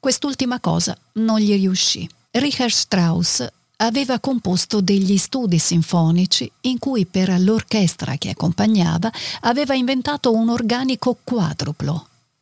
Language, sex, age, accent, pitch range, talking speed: Italian, female, 50-69, native, 175-245 Hz, 110 wpm